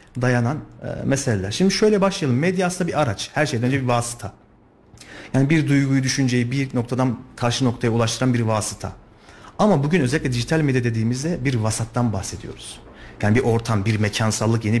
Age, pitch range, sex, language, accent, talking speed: 40-59, 115-155 Hz, male, Turkish, native, 160 wpm